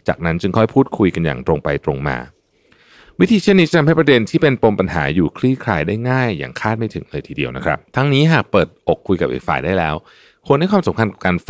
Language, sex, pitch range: Thai, male, 75-115 Hz